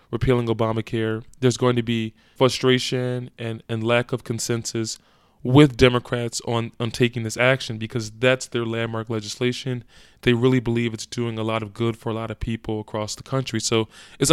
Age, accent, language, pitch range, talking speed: 20-39, American, English, 115-135 Hz, 180 wpm